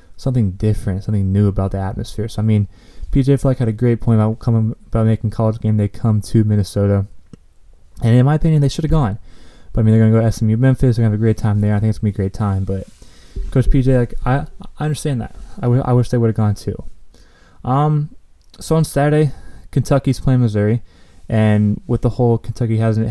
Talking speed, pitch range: 235 wpm, 100-125 Hz